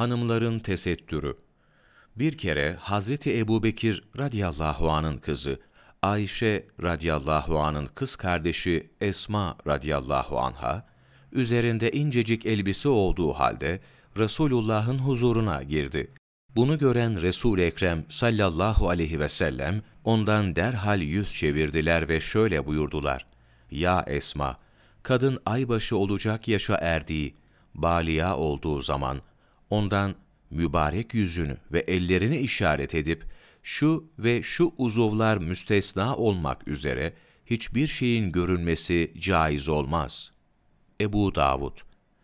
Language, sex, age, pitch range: Turkish, male, 40-59, 80-110 Hz